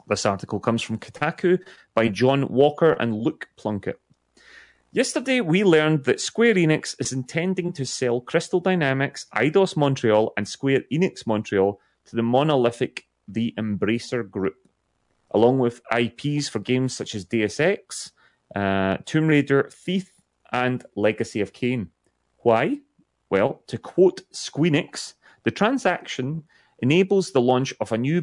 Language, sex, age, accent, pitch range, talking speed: English, male, 30-49, British, 105-150 Hz, 140 wpm